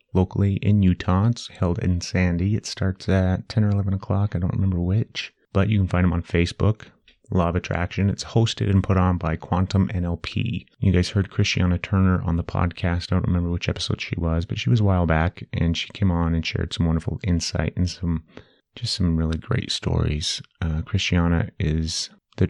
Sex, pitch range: male, 85-100 Hz